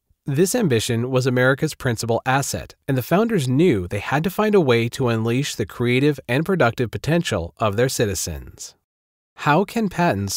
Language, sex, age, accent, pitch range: Chinese, male, 40-59, American, 105-140 Hz